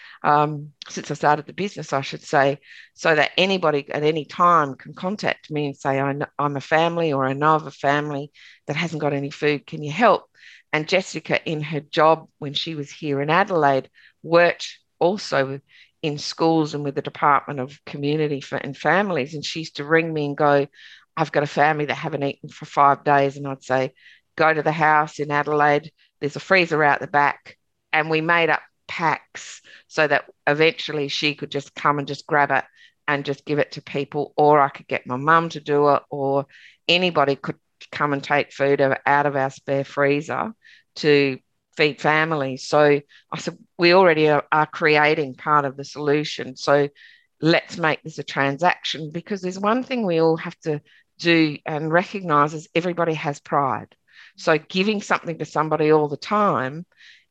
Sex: female